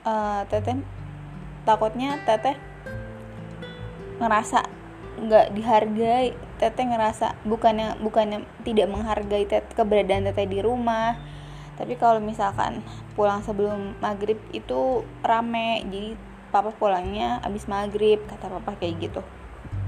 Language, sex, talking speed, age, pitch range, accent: Indonesian, female, 105 wpm, 20-39, 135-230 Hz, native